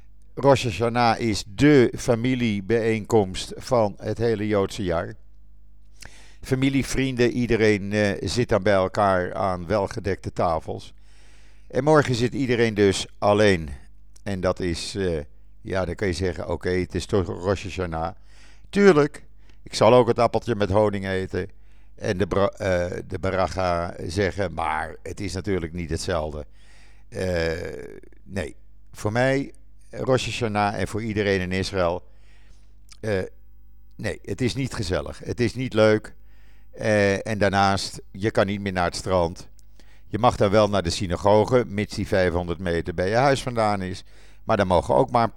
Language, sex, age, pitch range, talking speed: Dutch, male, 50-69, 95-115 Hz, 155 wpm